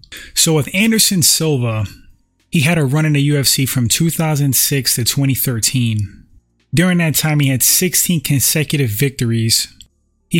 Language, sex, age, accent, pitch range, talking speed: English, male, 20-39, American, 125-155 Hz, 140 wpm